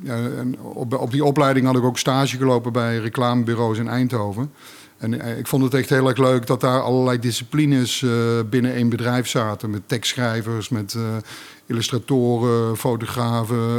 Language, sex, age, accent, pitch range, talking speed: Dutch, male, 50-69, Dutch, 115-130 Hz, 165 wpm